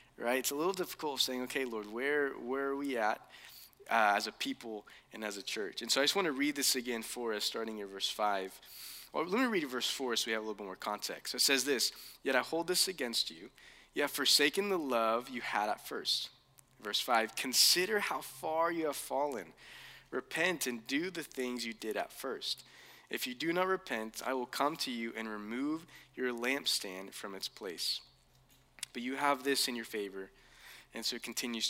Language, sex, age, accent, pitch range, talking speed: English, male, 20-39, American, 110-145 Hz, 220 wpm